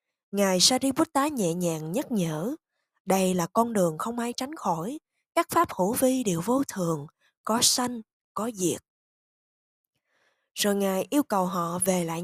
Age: 20-39